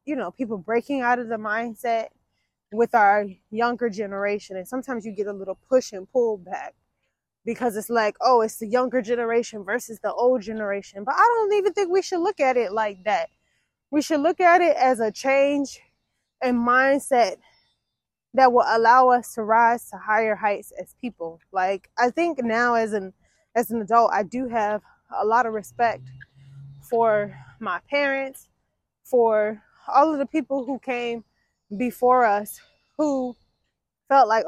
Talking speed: 170 wpm